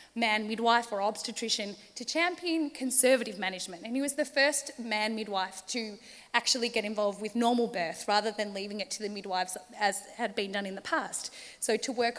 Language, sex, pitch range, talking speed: English, female, 205-255 Hz, 190 wpm